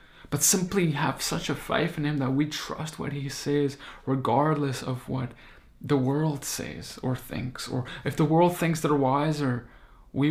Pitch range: 130-160 Hz